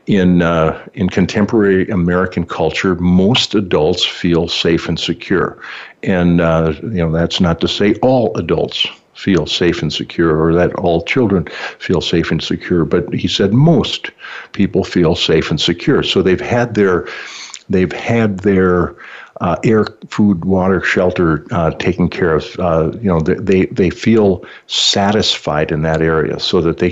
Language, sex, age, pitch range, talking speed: English, male, 60-79, 80-95 Hz, 160 wpm